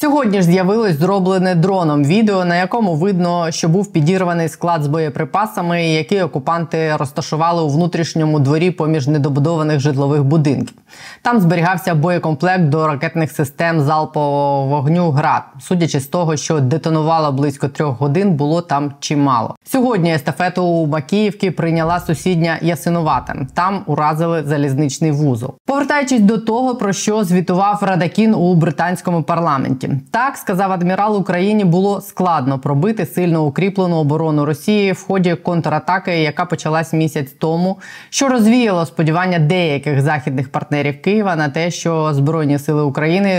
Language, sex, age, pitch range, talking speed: Ukrainian, female, 20-39, 150-185 Hz, 135 wpm